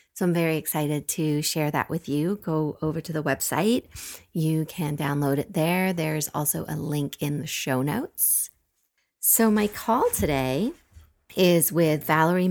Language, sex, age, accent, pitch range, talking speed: English, female, 30-49, American, 150-180 Hz, 165 wpm